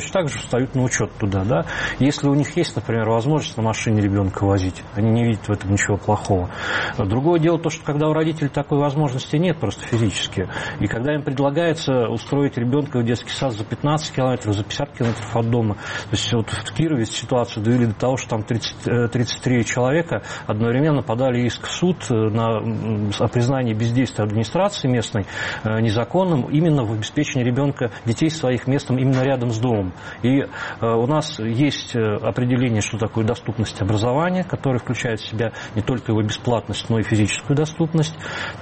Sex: male